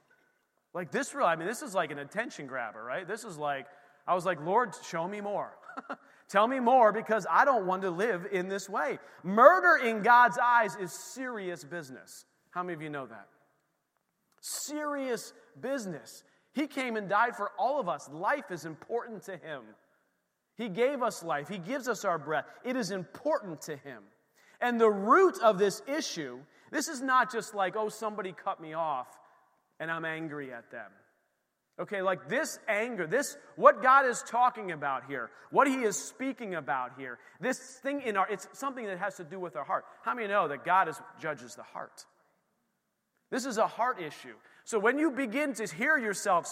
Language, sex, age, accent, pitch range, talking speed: English, male, 30-49, American, 175-255 Hz, 190 wpm